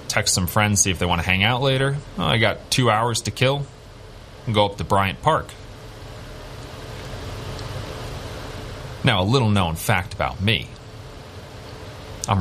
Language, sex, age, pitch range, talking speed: English, male, 30-49, 95-120 Hz, 145 wpm